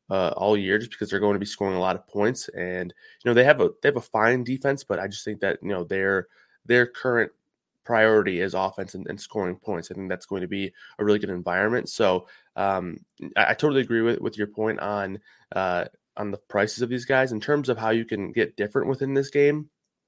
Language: English